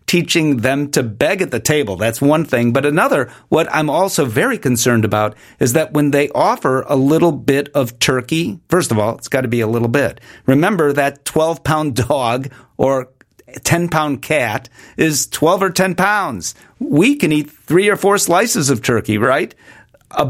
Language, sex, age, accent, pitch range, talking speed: English, male, 40-59, American, 120-155 Hz, 180 wpm